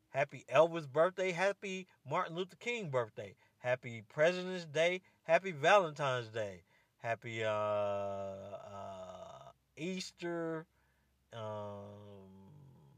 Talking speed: 90 wpm